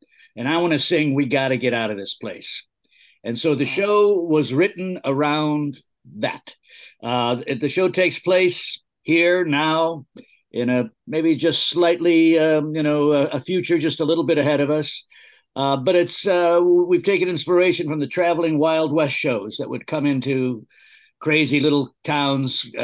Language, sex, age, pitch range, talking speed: English, male, 50-69, 135-165 Hz, 170 wpm